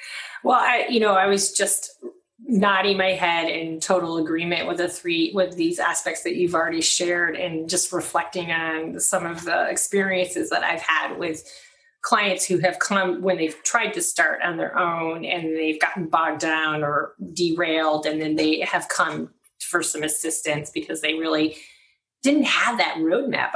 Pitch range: 155-190 Hz